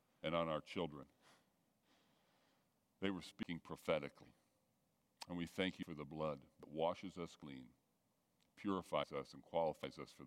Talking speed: 145 wpm